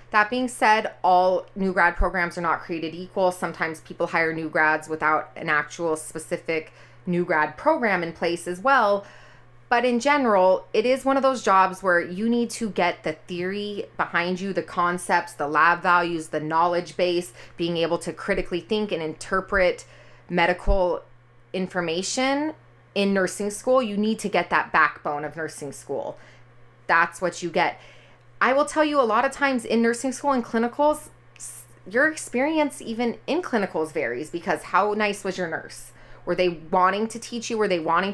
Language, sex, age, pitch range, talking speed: English, female, 30-49, 165-230 Hz, 175 wpm